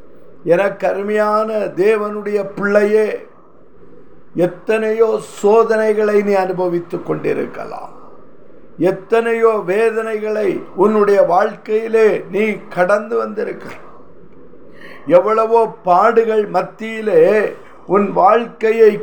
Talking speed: 65 wpm